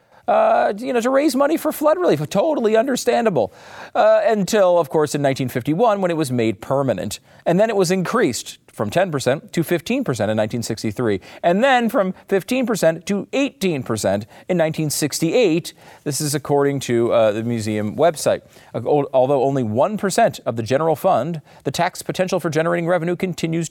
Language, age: English, 40-59